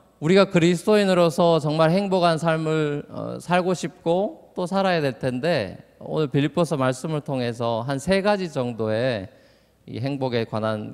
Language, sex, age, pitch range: Korean, male, 20-39, 120-165 Hz